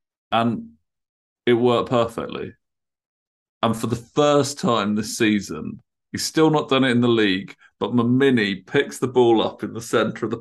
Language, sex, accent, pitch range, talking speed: English, male, British, 100-135 Hz, 175 wpm